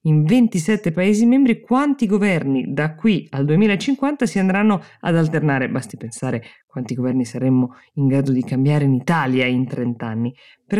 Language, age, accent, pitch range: Italian, 20-39, native, 135-175 Hz